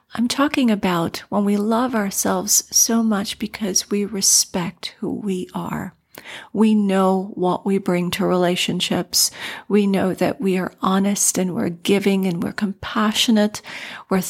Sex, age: female, 40-59